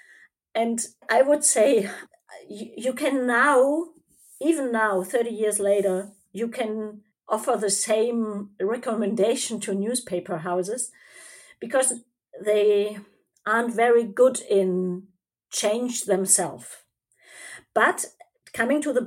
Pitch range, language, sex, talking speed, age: 195-245 Hz, English, female, 105 wpm, 40-59